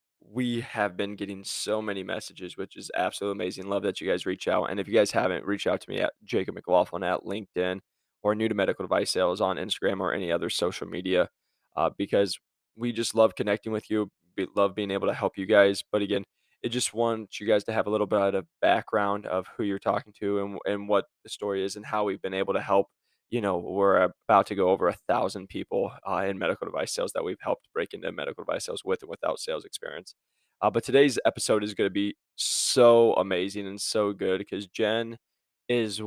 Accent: American